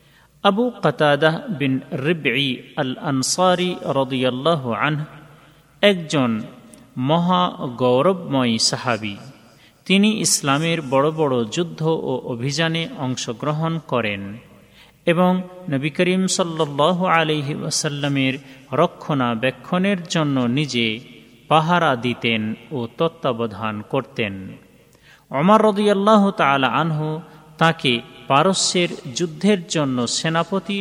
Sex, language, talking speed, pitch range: male, Bengali, 80 wpm, 125-170 Hz